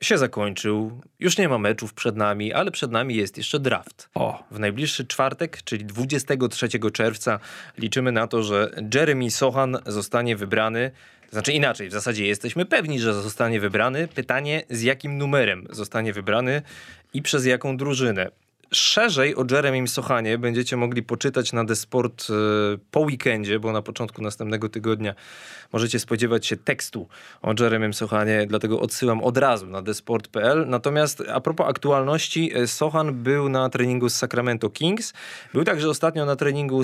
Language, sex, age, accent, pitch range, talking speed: Polish, male, 20-39, native, 110-135 Hz, 150 wpm